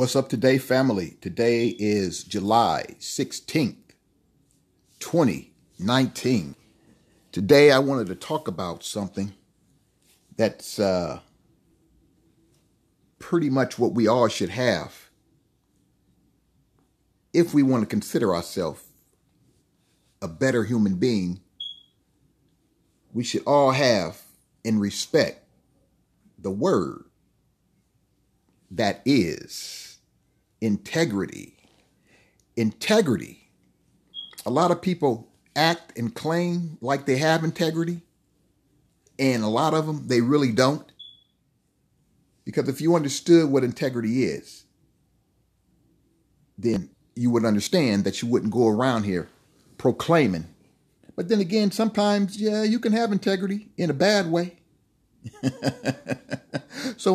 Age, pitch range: 50-69, 115-175 Hz